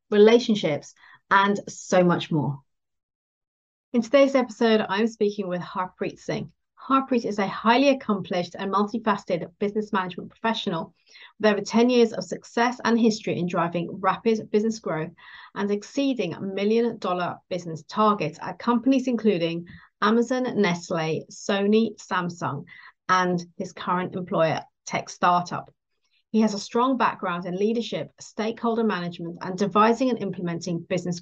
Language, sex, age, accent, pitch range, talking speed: English, female, 30-49, British, 180-225 Hz, 130 wpm